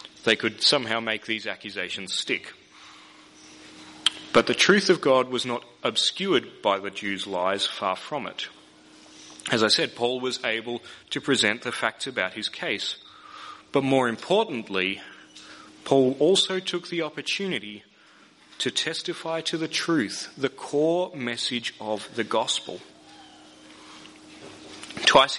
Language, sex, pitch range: English, male, 115-155 Hz